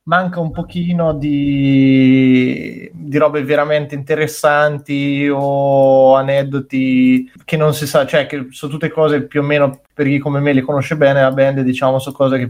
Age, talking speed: 20-39, 170 wpm